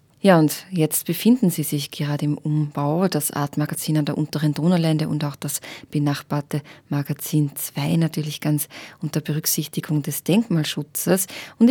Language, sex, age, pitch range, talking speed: German, female, 20-39, 150-170 Hz, 145 wpm